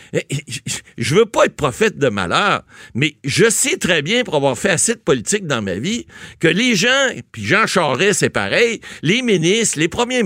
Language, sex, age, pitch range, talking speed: French, male, 60-79, 140-230 Hz, 200 wpm